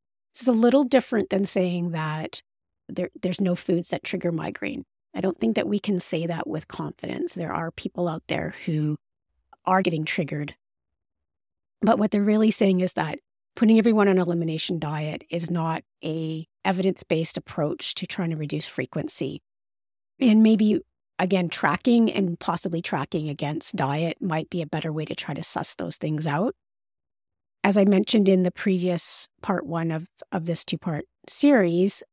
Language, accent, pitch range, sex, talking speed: English, American, 160-190 Hz, female, 165 wpm